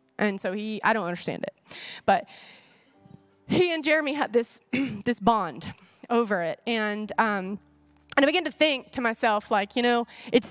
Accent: American